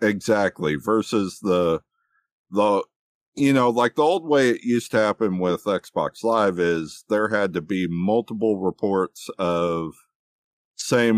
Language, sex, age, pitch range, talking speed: English, male, 50-69, 85-110 Hz, 140 wpm